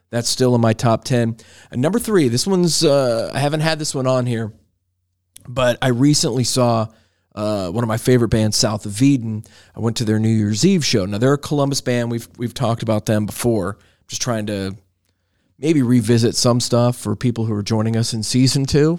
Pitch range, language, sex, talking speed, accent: 105-130 Hz, English, male, 215 wpm, American